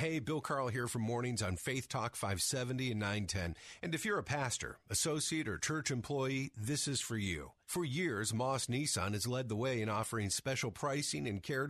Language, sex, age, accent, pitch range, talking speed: English, male, 50-69, American, 115-155 Hz, 200 wpm